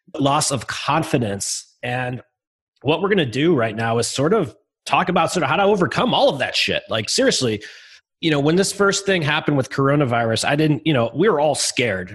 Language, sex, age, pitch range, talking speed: English, male, 30-49, 115-165 Hz, 215 wpm